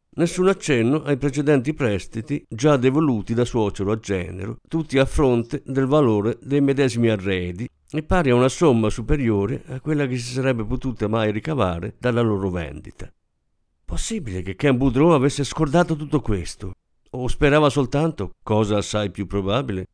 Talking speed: 155 wpm